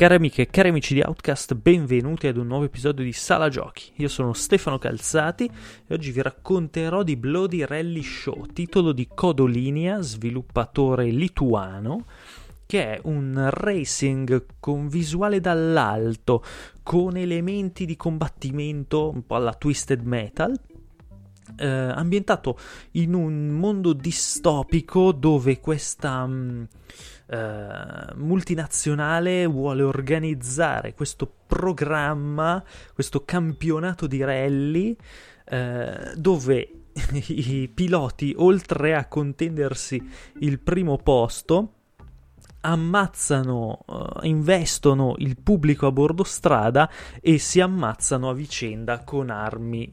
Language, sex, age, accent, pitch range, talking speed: Italian, male, 20-39, native, 130-170 Hz, 105 wpm